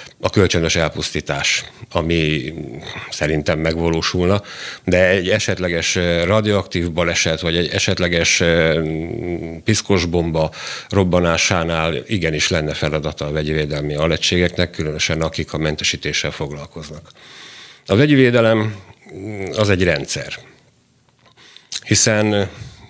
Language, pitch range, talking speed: Hungarian, 85-105 Hz, 95 wpm